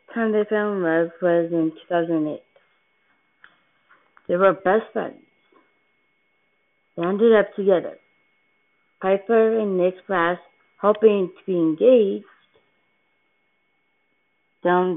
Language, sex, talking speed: English, female, 105 wpm